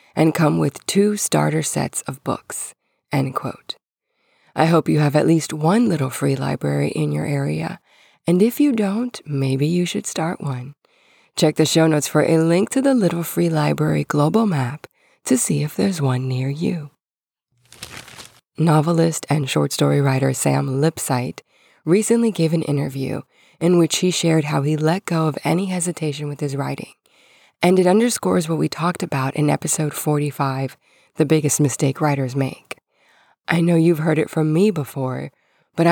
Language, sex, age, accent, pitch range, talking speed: English, female, 20-39, American, 135-170 Hz, 170 wpm